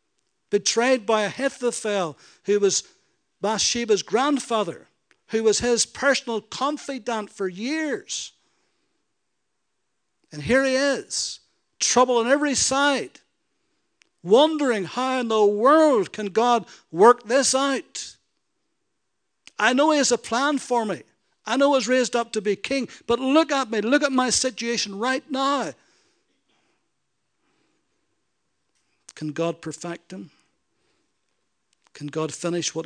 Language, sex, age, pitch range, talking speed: English, male, 60-79, 155-250 Hz, 120 wpm